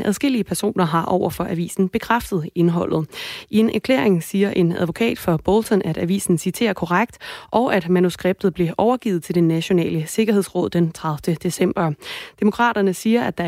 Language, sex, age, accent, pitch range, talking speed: Danish, female, 30-49, native, 170-205 Hz, 160 wpm